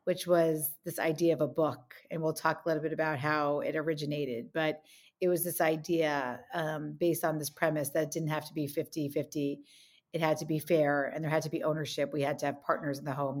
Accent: American